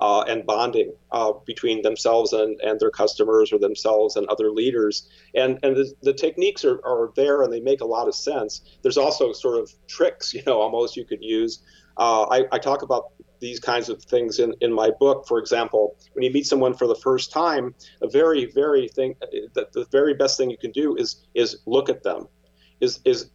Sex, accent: male, American